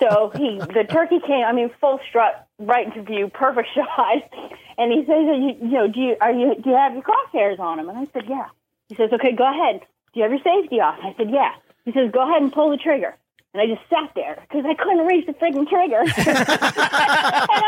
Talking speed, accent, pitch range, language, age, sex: 240 wpm, American, 225-320 Hz, English, 40-59, female